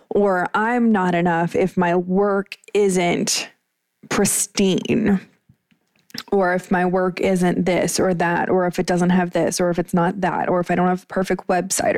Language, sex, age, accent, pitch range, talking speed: English, female, 20-39, American, 175-215 Hz, 180 wpm